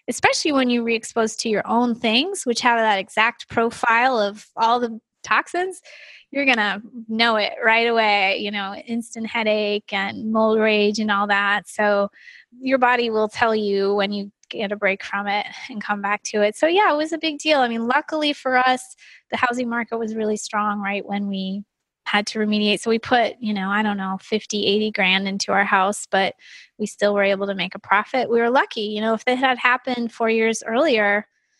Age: 20-39